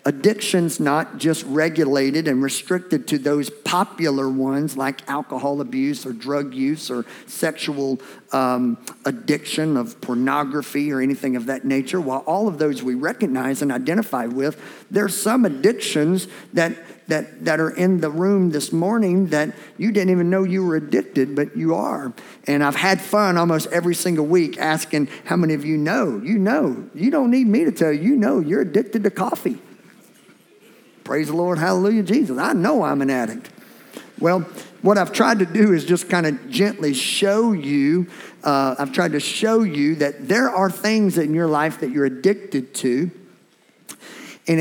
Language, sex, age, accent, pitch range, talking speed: English, male, 50-69, American, 135-190 Hz, 175 wpm